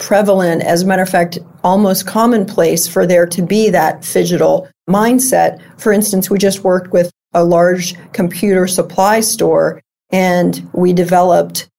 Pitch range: 175-205 Hz